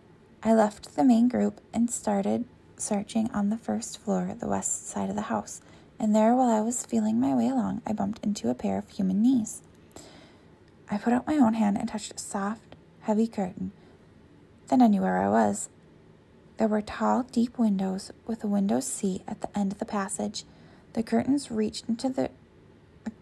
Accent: American